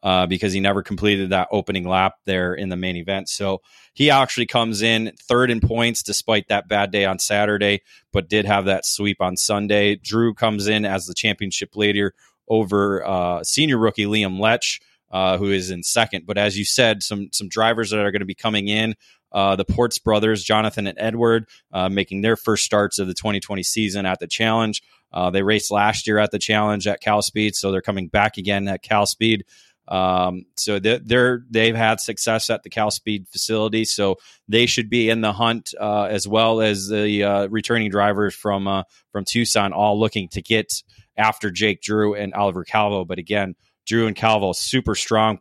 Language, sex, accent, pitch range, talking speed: English, male, American, 95-110 Hz, 200 wpm